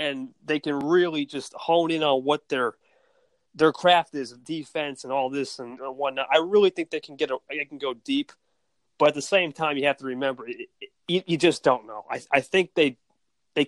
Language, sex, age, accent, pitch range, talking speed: English, male, 30-49, American, 130-205 Hz, 225 wpm